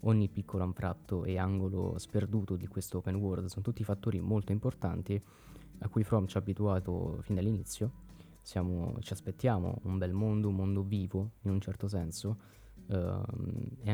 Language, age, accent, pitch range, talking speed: Italian, 20-39, native, 95-110 Hz, 165 wpm